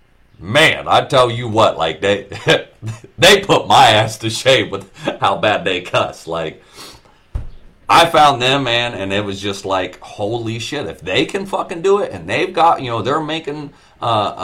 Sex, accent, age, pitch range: male, American, 40-59, 100-150 Hz